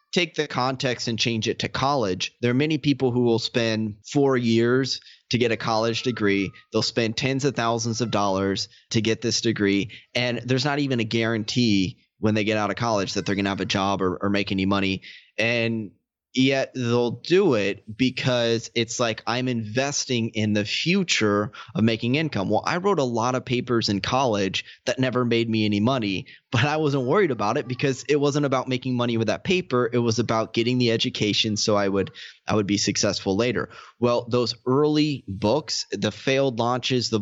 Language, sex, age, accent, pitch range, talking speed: English, male, 20-39, American, 105-130 Hz, 200 wpm